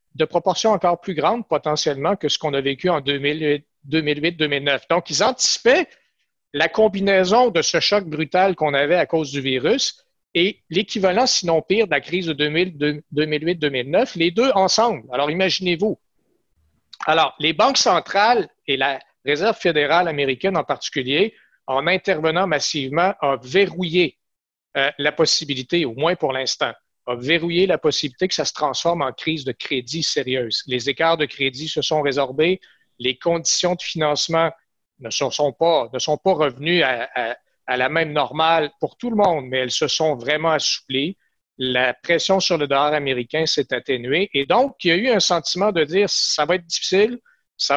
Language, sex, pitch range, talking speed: French, male, 145-185 Hz, 165 wpm